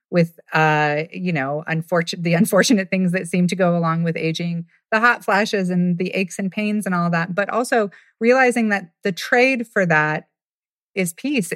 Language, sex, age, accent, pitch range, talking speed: English, female, 30-49, American, 160-190 Hz, 185 wpm